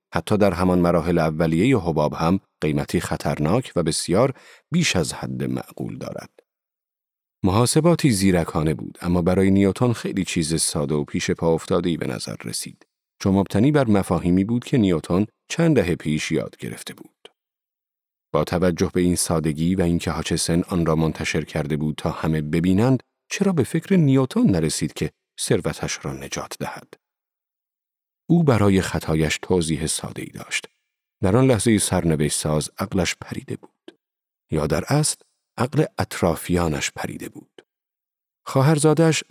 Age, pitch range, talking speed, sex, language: 40-59, 85-125 Hz, 145 wpm, male, Persian